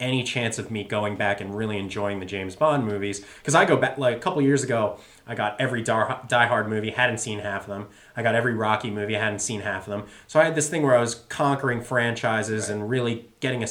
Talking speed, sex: 255 wpm, male